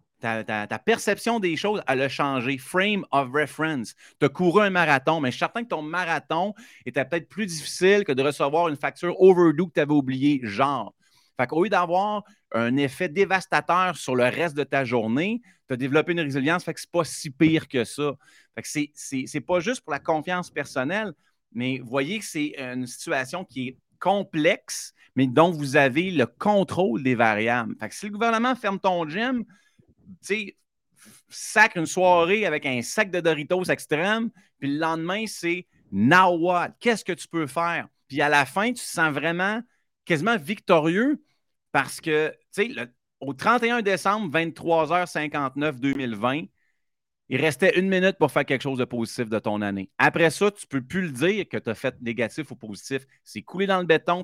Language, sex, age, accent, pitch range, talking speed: French, male, 30-49, Canadian, 135-185 Hz, 190 wpm